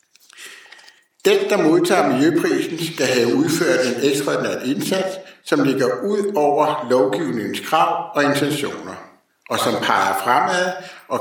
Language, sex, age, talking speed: Danish, male, 60-79, 125 wpm